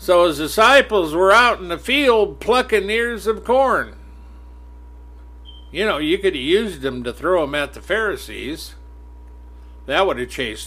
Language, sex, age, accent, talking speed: English, male, 60-79, American, 165 wpm